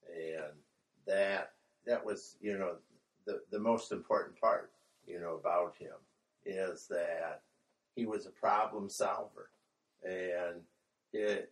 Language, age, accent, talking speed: English, 60-79, American, 125 wpm